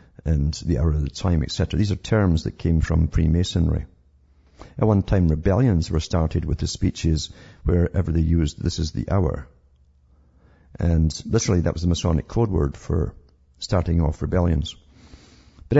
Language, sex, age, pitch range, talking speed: English, male, 50-69, 80-95 Hz, 165 wpm